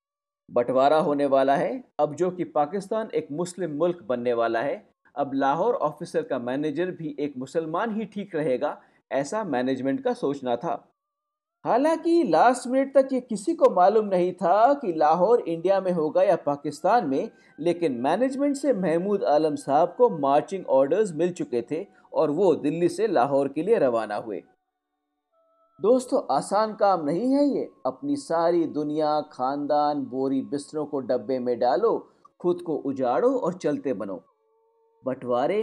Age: 50-69